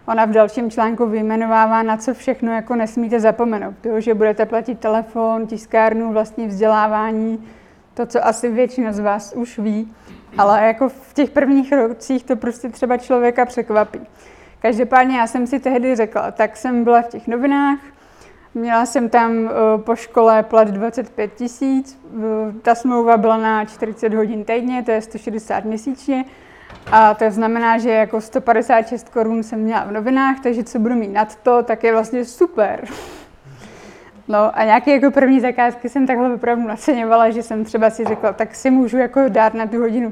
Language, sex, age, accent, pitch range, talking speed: Czech, female, 20-39, native, 220-245 Hz, 170 wpm